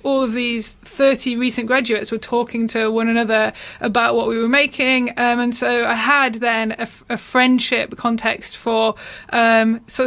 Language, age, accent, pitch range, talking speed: English, 20-39, British, 220-245 Hz, 175 wpm